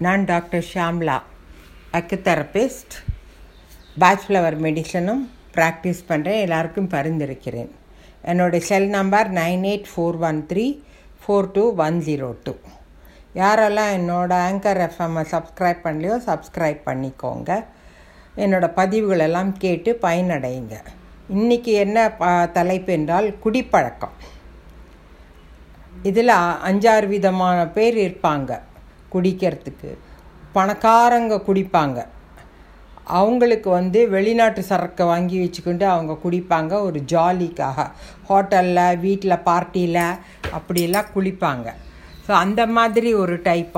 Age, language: 60-79, Tamil